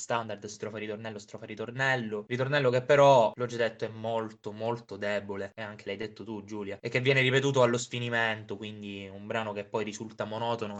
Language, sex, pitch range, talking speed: Italian, male, 110-135 Hz, 190 wpm